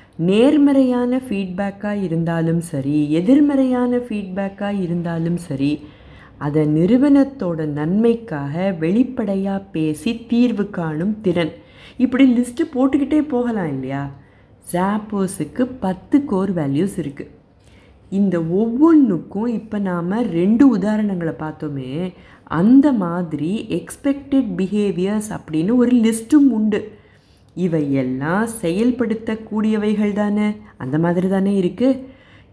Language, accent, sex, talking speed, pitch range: Tamil, native, female, 90 wpm, 165-235 Hz